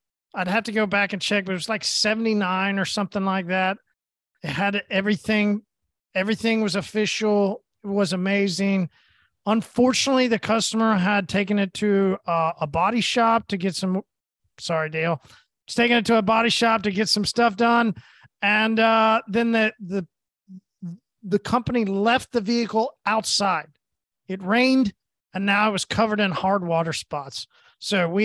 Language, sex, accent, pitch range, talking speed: English, male, American, 190-235 Hz, 165 wpm